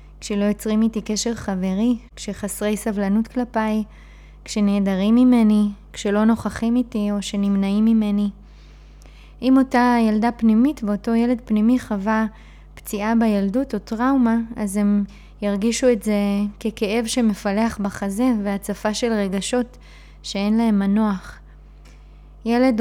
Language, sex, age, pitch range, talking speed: Hebrew, female, 20-39, 205-230 Hz, 115 wpm